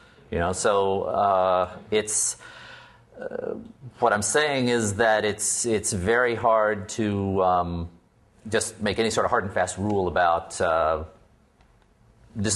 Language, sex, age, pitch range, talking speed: English, male, 40-59, 90-110 Hz, 155 wpm